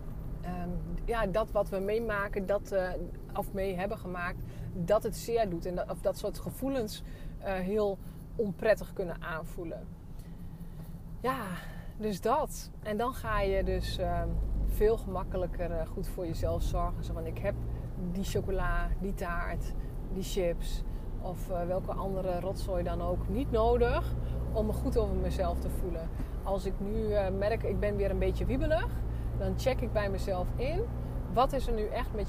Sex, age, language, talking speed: female, 20-39, Dutch, 170 wpm